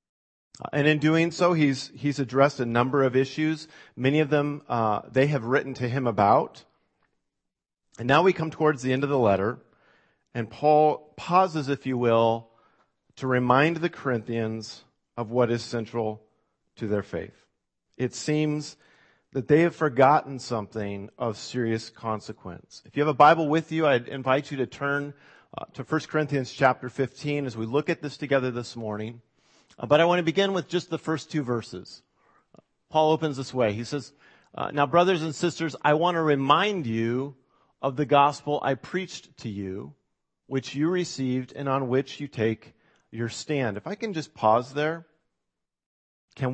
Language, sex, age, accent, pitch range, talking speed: English, male, 40-59, American, 125-155 Hz, 175 wpm